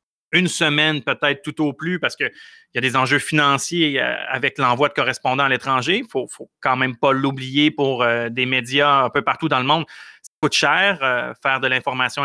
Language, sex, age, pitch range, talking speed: French, male, 30-49, 130-155 Hz, 210 wpm